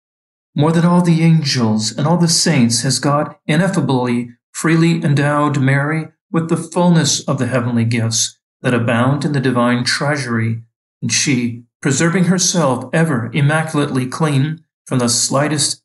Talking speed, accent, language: 145 wpm, American, English